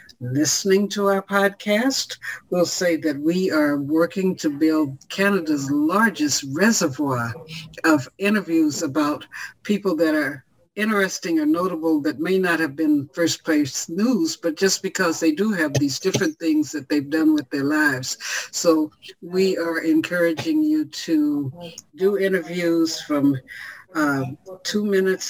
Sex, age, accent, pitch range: female, 60-79, American, 155-195 Hz